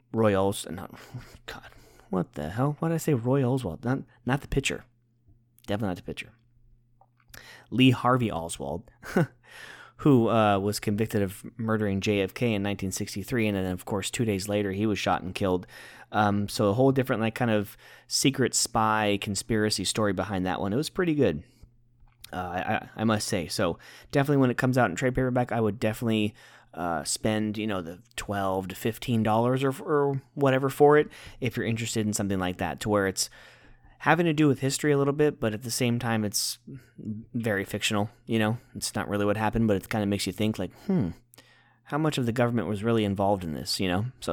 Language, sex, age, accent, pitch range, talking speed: English, male, 20-39, American, 100-125 Hz, 205 wpm